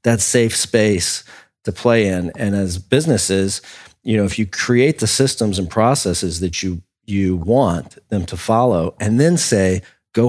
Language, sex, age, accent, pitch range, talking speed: English, male, 40-59, American, 95-120 Hz, 170 wpm